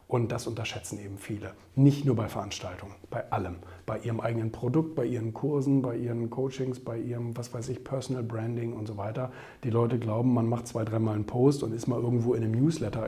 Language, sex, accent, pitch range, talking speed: German, male, German, 115-140 Hz, 215 wpm